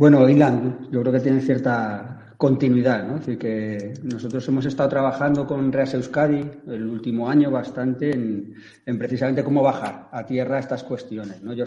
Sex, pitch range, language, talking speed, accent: male, 115-130 Hz, Spanish, 180 wpm, Spanish